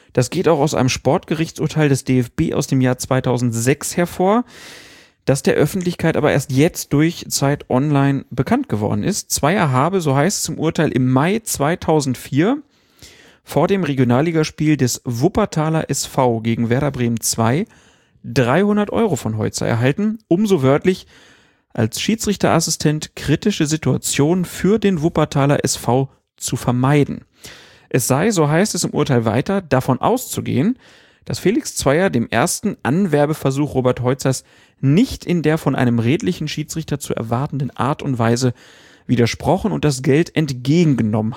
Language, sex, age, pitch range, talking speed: German, male, 40-59, 125-165 Hz, 140 wpm